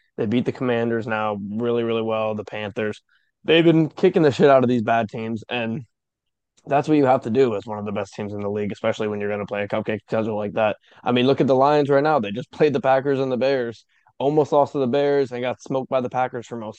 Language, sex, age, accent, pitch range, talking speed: English, male, 20-39, American, 110-130 Hz, 270 wpm